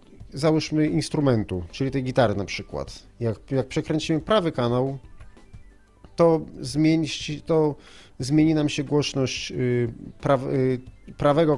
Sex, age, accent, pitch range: male, 30-49, native, 120-145 Hz